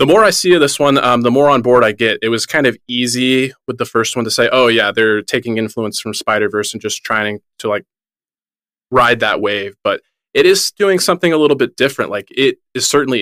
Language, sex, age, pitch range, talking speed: English, male, 20-39, 105-125 Hz, 240 wpm